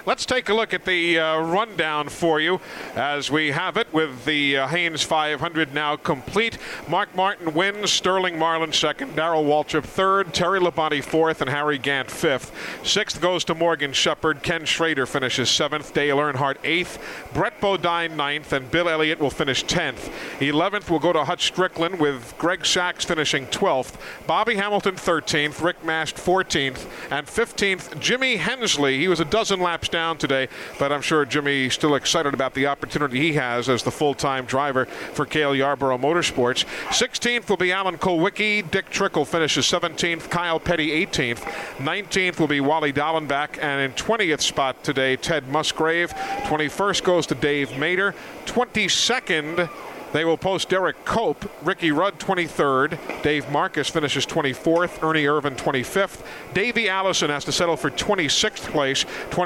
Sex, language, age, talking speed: male, English, 50-69, 160 wpm